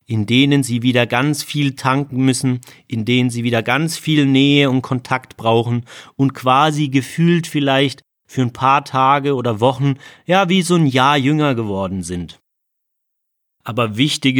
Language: German